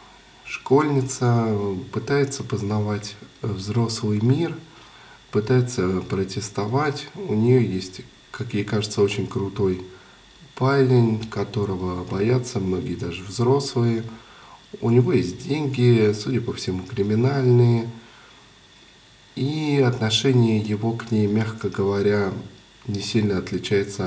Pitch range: 95-125 Hz